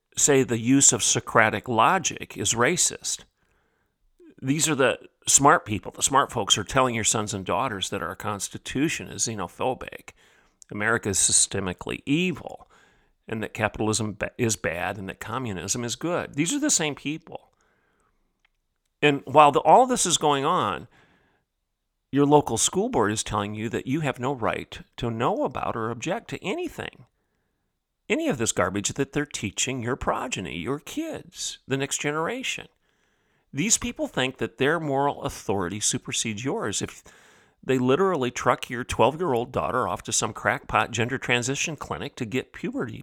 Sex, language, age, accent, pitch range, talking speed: male, English, 50-69, American, 115-150 Hz, 160 wpm